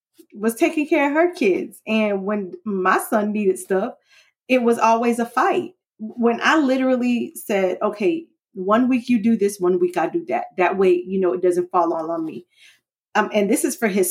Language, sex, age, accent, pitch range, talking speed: English, female, 30-49, American, 190-310 Hz, 205 wpm